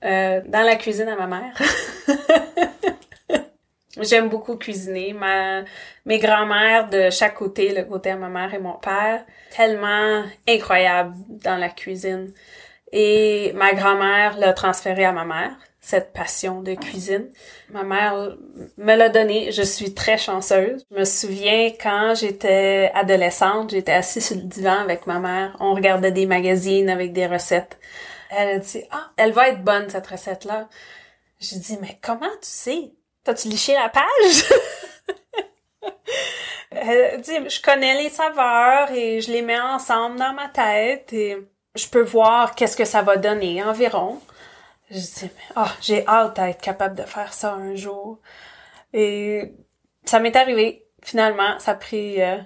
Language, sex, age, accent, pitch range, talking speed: French, female, 30-49, Canadian, 195-230 Hz, 155 wpm